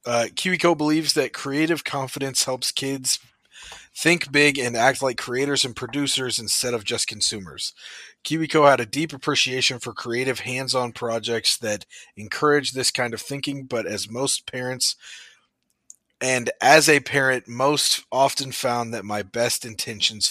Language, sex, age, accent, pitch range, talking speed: English, male, 30-49, American, 115-140 Hz, 150 wpm